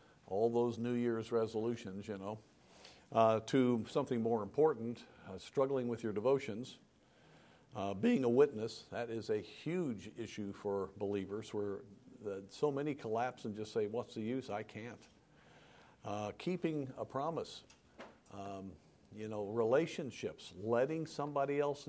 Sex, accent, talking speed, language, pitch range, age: male, American, 145 wpm, English, 105-135 Hz, 50-69